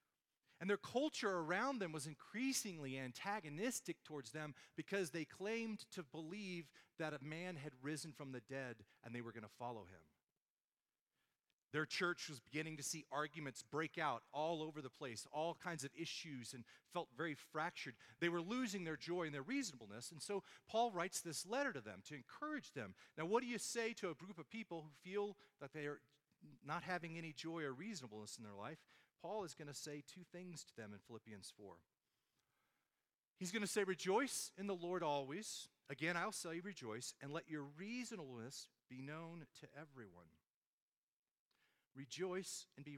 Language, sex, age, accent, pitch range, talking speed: English, male, 40-59, American, 145-210 Hz, 180 wpm